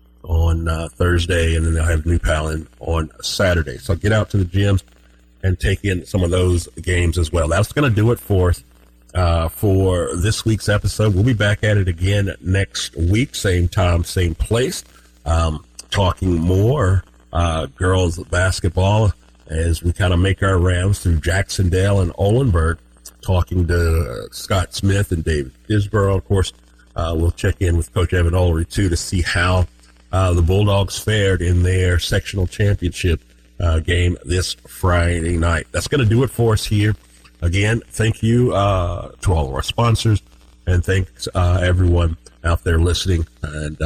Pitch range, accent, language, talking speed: 80-95 Hz, American, English, 170 wpm